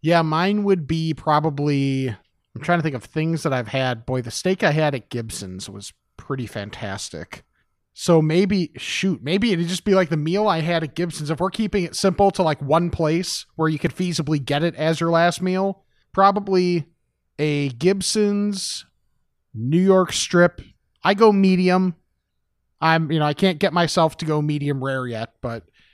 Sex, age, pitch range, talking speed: male, 30-49, 140-180 Hz, 185 wpm